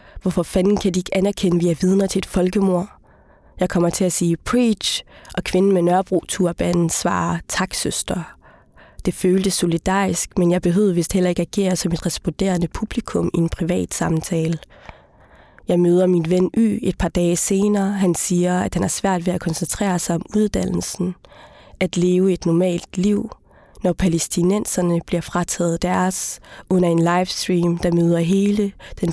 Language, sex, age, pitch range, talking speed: Danish, female, 20-39, 175-190 Hz, 170 wpm